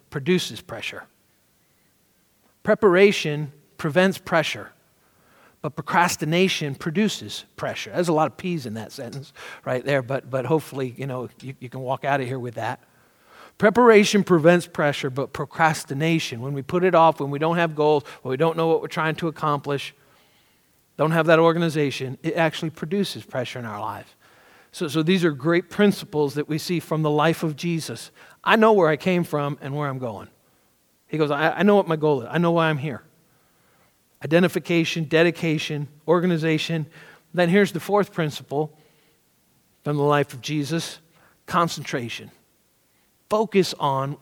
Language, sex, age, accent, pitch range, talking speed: English, male, 50-69, American, 140-170 Hz, 165 wpm